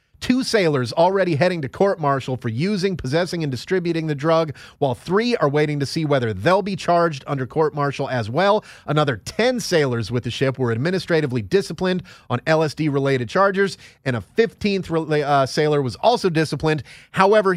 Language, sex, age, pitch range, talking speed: English, male, 30-49, 120-175 Hz, 165 wpm